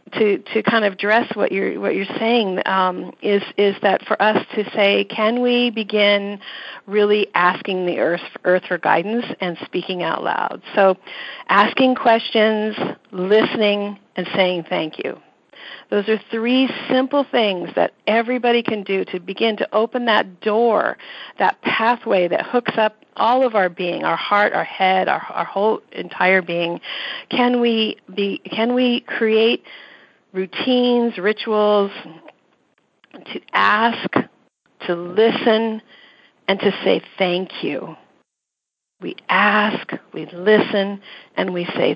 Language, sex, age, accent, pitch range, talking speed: English, female, 50-69, American, 195-240 Hz, 140 wpm